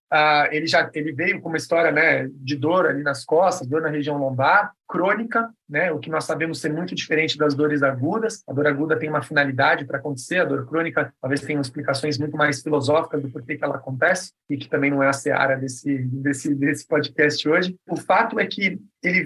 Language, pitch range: Portuguese, 150-210 Hz